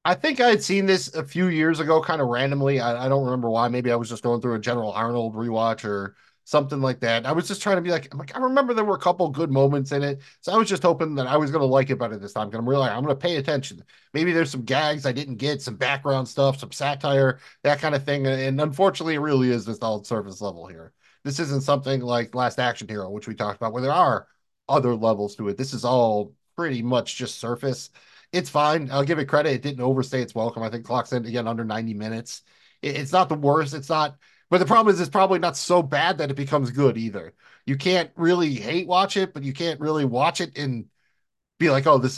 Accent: American